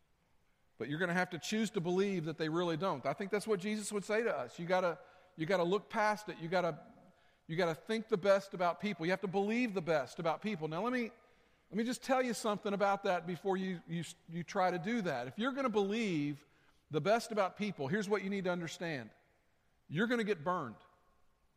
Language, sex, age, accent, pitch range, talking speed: English, male, 50-69, American, 160-210 Hz, 235 wpm